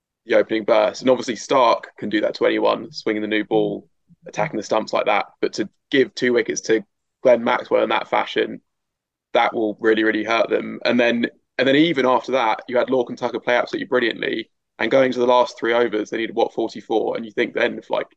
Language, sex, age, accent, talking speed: English, male, 20-39, British, 230 wpm